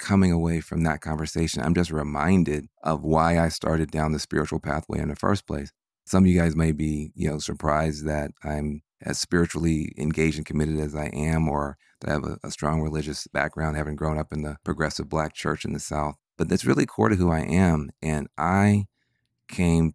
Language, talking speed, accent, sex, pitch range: English, 210 wpm, American, male, 75-85 Hz